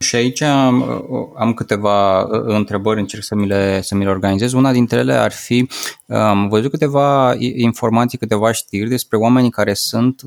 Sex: male